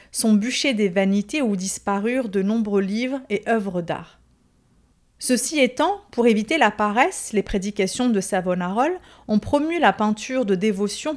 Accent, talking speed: French, 150 wpm